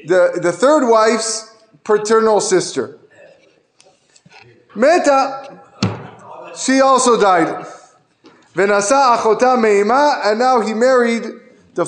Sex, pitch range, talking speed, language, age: male, 185-255 Hz, 75 wpm, English, 30-49